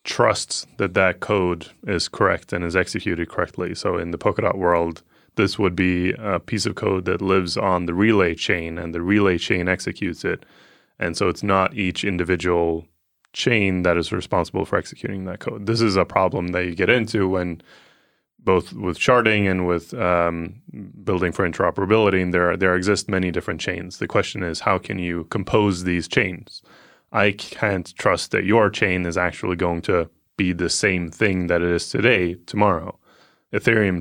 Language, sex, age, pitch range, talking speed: English, male, 20-39, 85-100 Hz, 180 wpm